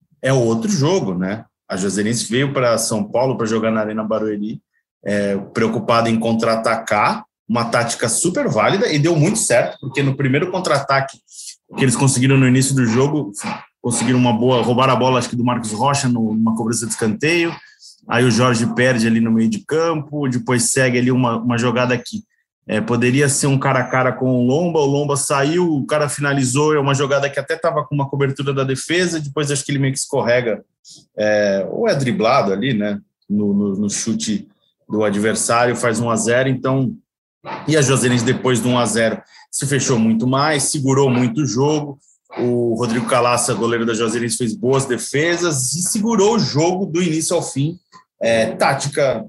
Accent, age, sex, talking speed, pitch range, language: Brazilian, 20-39, male, 185 wpm, 115-140 Hz, Portuguese